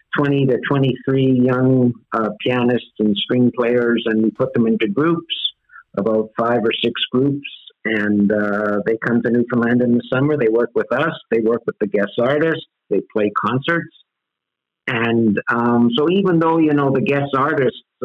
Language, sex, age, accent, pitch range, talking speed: English, male, 50-69, American, 110-130 Hz, 165 wpm